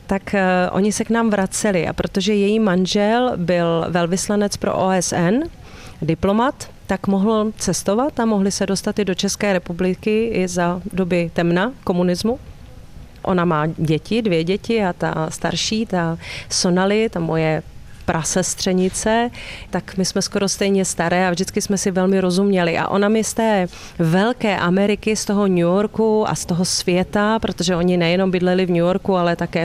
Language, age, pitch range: Czech, 30-49, 175-205 Hz